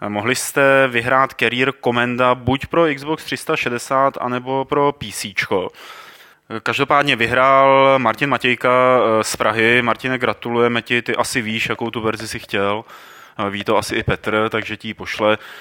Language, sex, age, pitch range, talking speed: Czech, male, 20-39, 110-135 Hz, 140 wpm